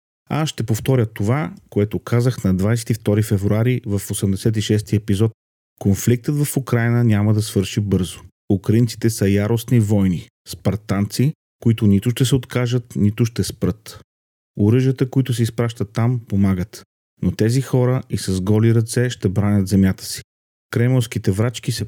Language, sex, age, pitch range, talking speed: Bulgarian, male, 40-59, 100-120 Hz, 145 wpm